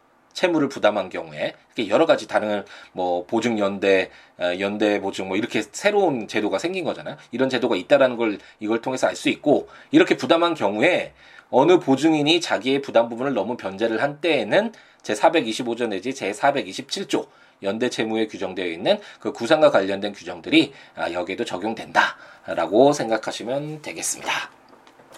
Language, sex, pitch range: Korean, male, 105-145 Hz